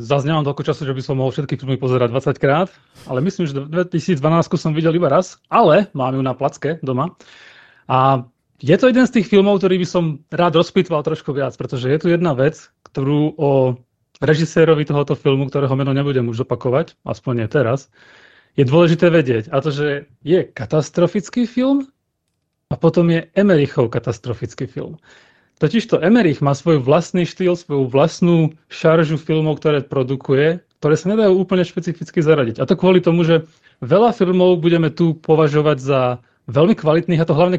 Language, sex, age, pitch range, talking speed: Slovak, male, 30-49, 135-175 Hz, 170 wpm